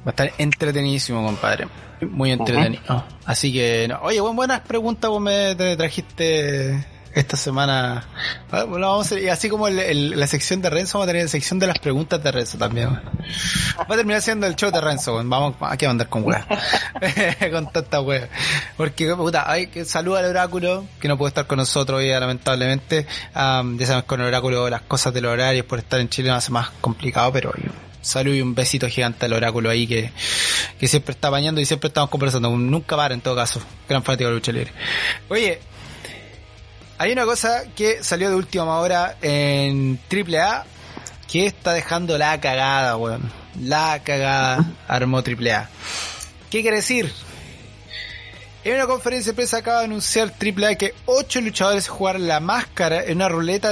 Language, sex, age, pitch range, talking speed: Spanish, male, 20-39, 125-180 Hz, 185 wpm